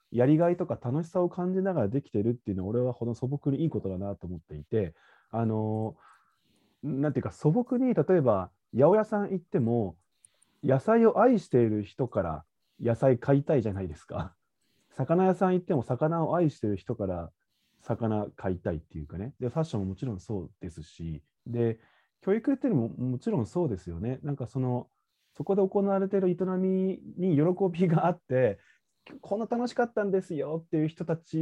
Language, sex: Japanese, male